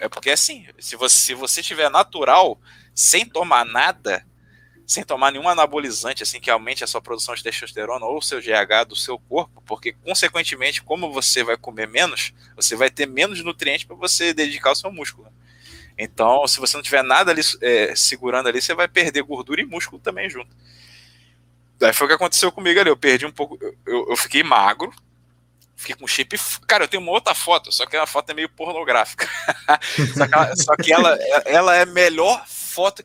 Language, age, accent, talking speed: Portuguese, 20-39, Brazilian, 195 wpm